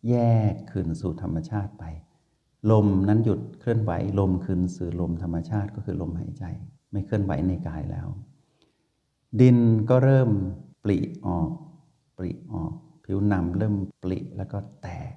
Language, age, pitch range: Thai, 60-79, 90-115 Hz